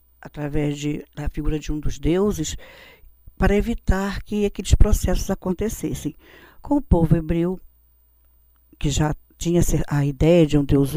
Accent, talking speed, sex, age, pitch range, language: Brazilian, 140 wpm, female, 50-69, 150-190 Hz, Portuguese